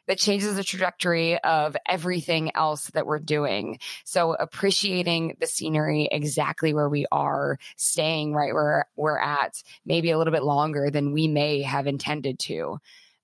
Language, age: English, 20-39